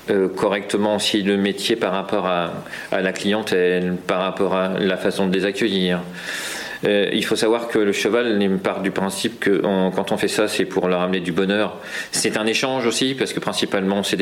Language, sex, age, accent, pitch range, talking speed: French, male, 40-59, French, 95-105 Hz, 205 wpm